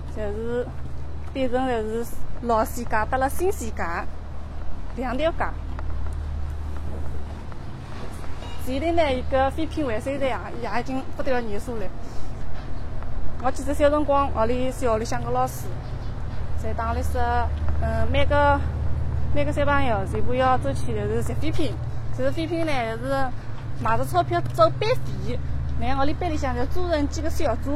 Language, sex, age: Chinese, female, 20-39